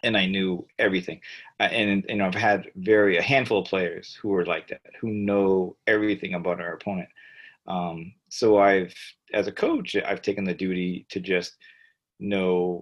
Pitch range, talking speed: 90-105 Hz, 170 wpm